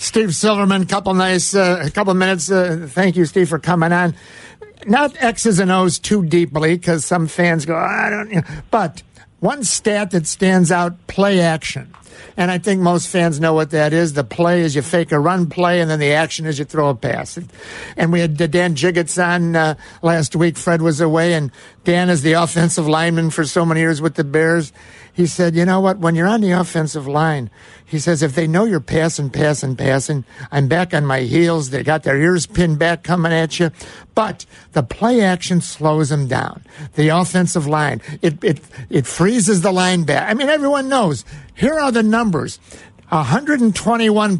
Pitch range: 155-185 Hz